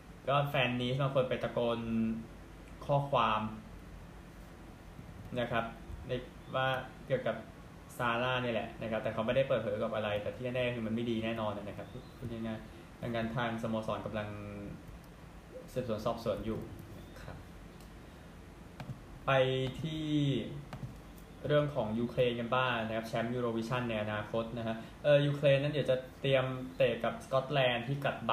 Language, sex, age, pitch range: Thai, male, 20-39, 110-130 Hz